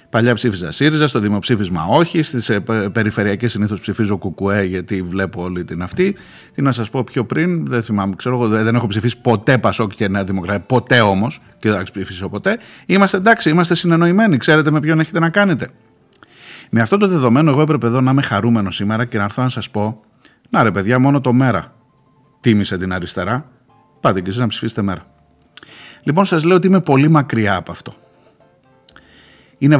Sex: male